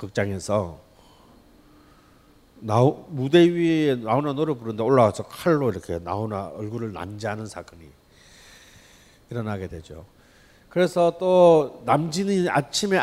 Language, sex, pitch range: Korean, male, 110-170 Hz